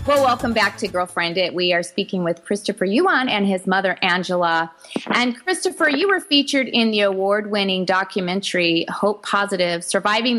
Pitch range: 185-235 Hz